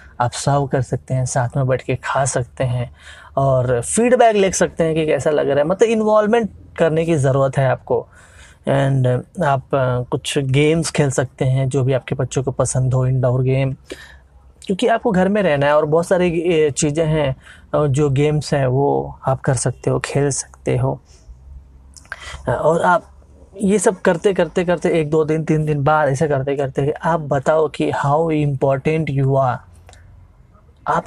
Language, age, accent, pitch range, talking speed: Hindi, 20-39, native, 130-165 Hz, 180 wpm